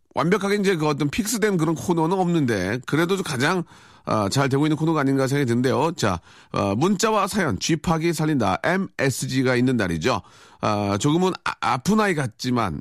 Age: 40-59